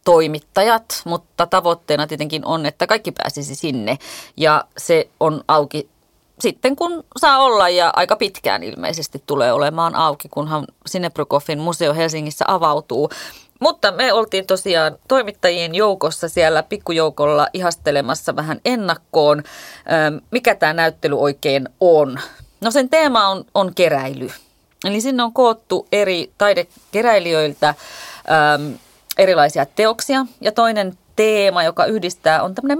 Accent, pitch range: native, 155-215 Hz